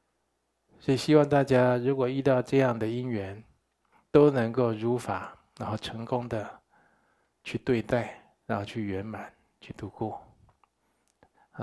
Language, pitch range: Chinese, 100-120 Hz